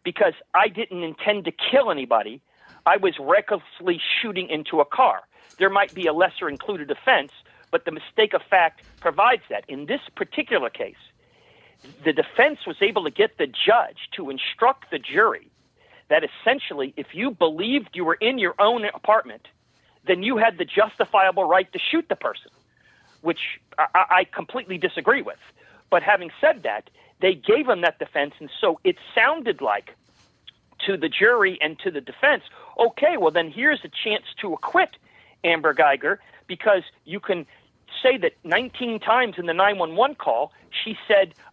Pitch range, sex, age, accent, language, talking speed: 175-250 Hz, male, 40-59, American, English, 165 wpm